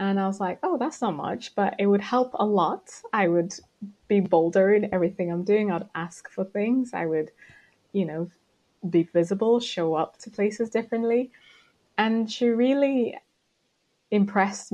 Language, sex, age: English, female, 20-39